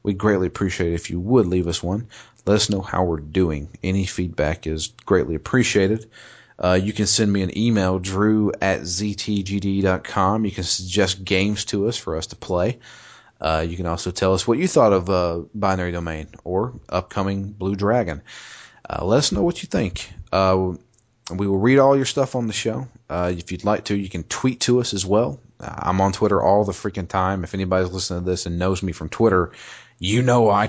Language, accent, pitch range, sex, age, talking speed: English, American, 90-110 Hz, male, 30-49, 210 wpm